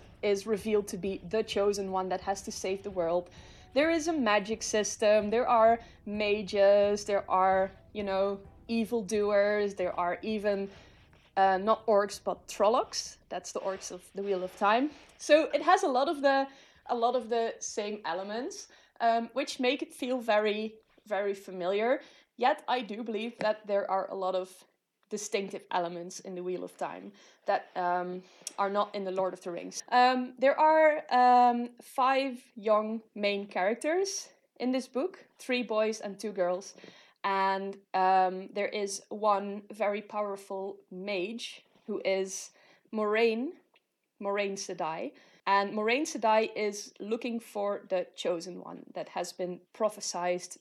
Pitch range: 195-240 Hz